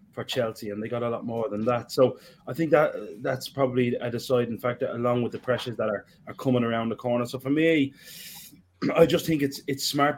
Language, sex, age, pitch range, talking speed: English, male, 20-39, 110-135 Hz, 230 wpm